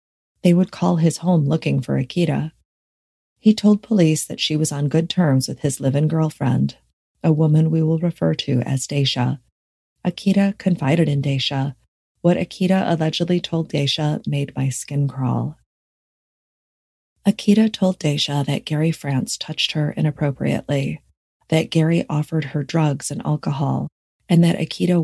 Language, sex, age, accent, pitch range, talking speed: English, female, 30-49, American, 140-170 Hz, 145 wpm